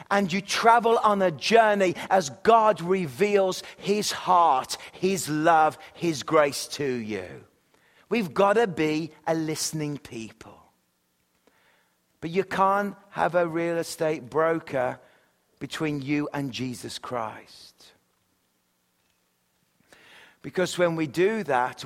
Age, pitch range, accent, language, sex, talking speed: 40-59, 140-185 Hz, British, English, male, 115 wpm